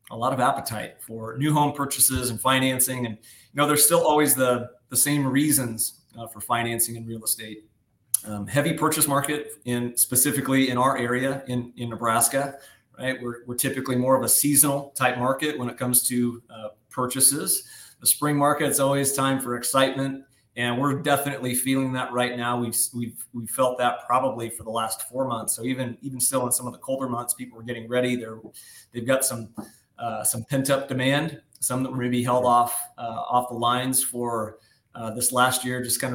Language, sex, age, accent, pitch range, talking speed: English, male, 30-49, American, 120-140 Hz, 200 wpm